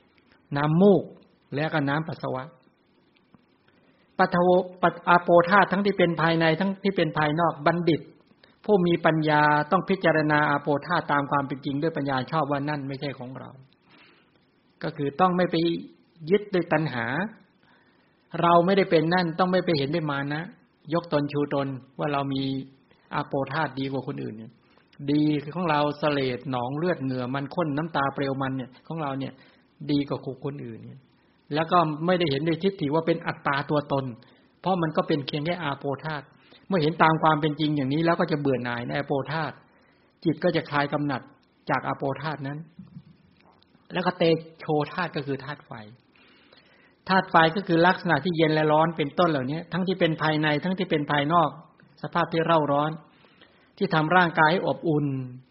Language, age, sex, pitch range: English, 60-79, male, 140-170 Hz